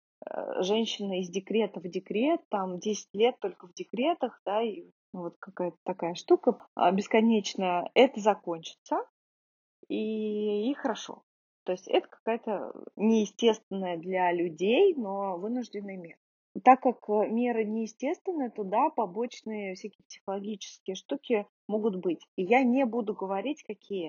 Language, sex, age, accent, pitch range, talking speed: Russian, female, 20-39, native, 195-240 Hz, 130 wpm